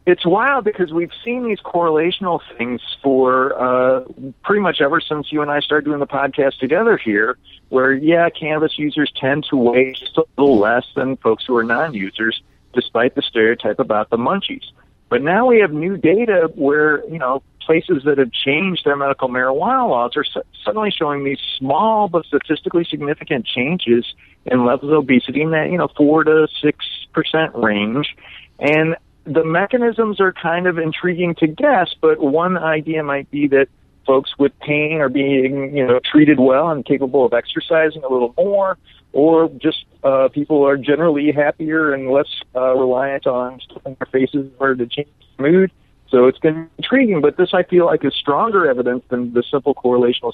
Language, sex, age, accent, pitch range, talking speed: English, male, 50-69, American, 130-160 Hz, 180 wpm